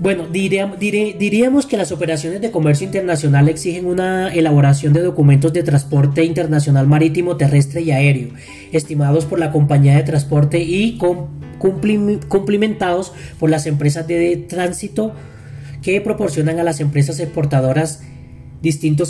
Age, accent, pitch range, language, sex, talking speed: 20-39, Colombian, 145-170 Hz, Spanish, male, 130 wpm